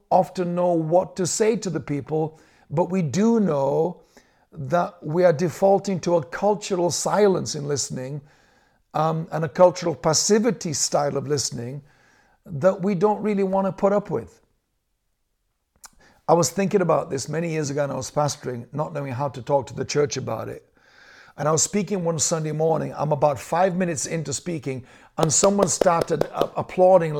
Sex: male